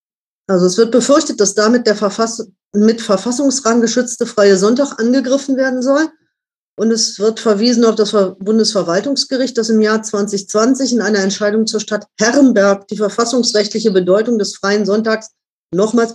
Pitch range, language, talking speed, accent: 200-240 Hz, German, 145 wpm, German